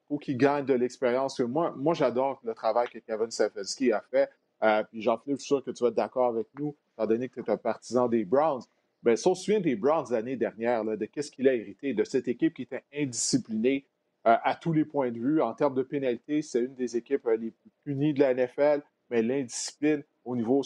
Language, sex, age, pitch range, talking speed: French, male, 30-49, 115-140 Hz, 235 wpm